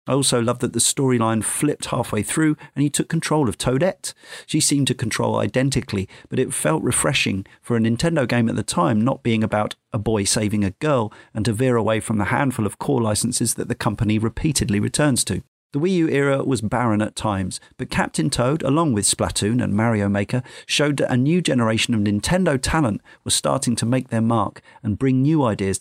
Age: 40-59